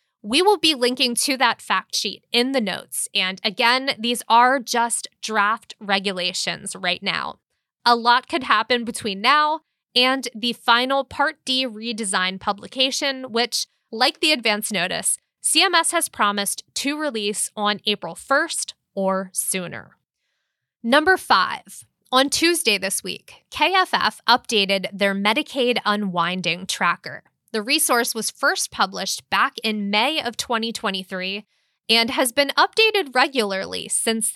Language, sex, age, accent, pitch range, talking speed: English, female, 20-39, American, 200-270 Hz, 135 wpm